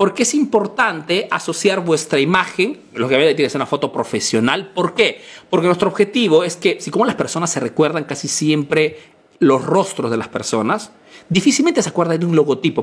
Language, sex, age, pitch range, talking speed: Spanish, male, 40-59, 150-215 Hz, 195 wpm